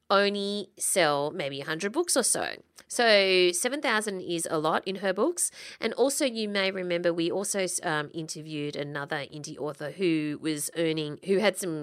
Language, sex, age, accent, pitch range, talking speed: English, female, 30-49, Australian, 160-215 Hz, 180 wpm